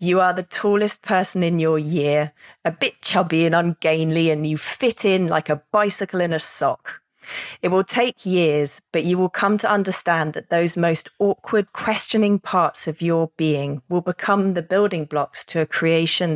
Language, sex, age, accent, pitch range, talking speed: English, female, 30-49, British, 155-200 Hz, 185 wpm